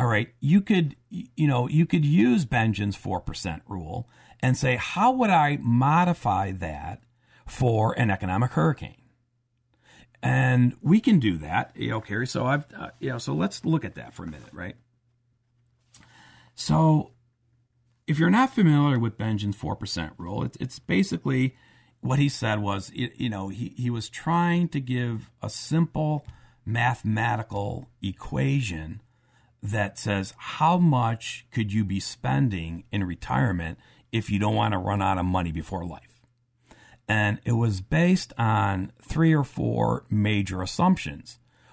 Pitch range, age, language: 105-135 Hz, 50-69, English